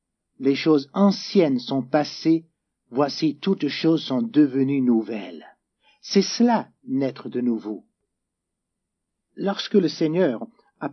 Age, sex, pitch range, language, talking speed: 50-69, male, 135-195 Hz, French, 110 wpm